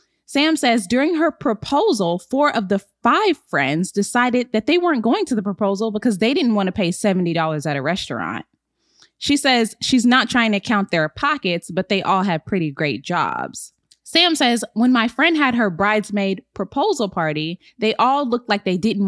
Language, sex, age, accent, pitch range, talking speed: English, female, 10-29, American, 180-245 Hz, 190 wpm